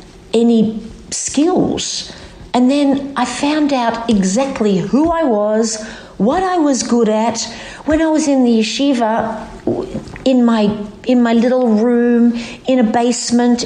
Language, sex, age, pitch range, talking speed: English, female, 50-69, 210-265 Hz, 135 wpm